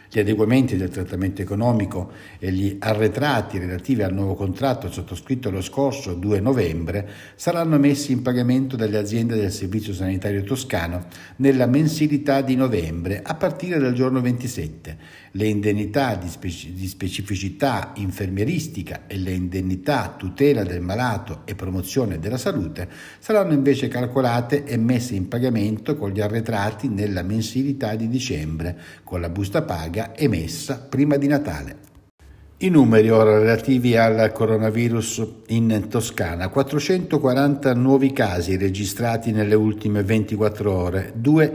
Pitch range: 95-135 Hz